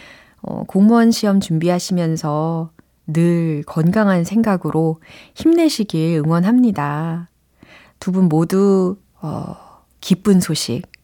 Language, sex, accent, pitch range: Korean, female, native, 165-255 Hz